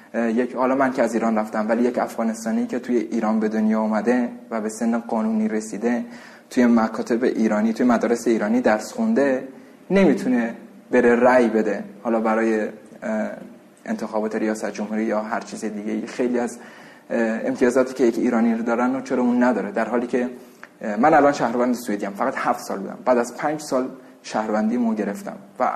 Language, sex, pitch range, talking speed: Persian, male, 110-135 Hz, 165 wpm